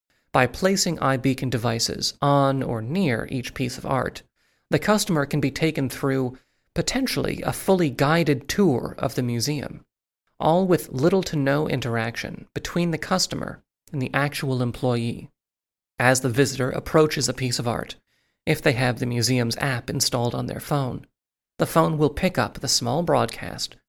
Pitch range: 125-160 Hz